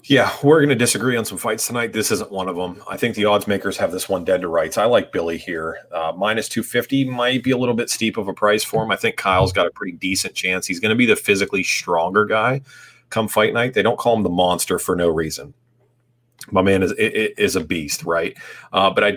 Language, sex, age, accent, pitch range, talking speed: English, male, 30-49, American, 95-125 Hz, 265 wpm